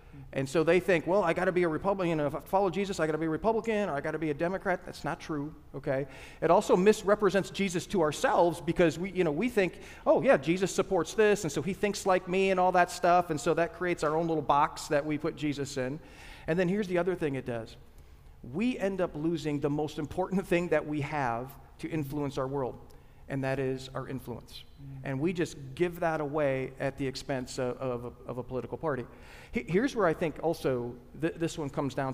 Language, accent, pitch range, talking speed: English, American, 135-175 Hz, 230 wpm